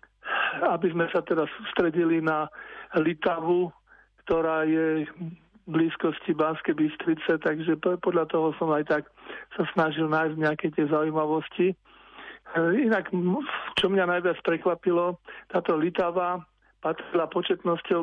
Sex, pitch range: male, 155-180 Hz